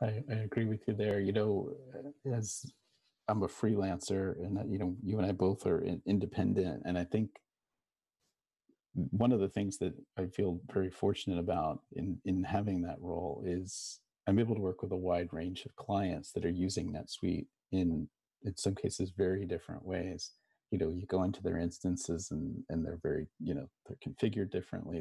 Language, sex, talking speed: English, male, 180 wpm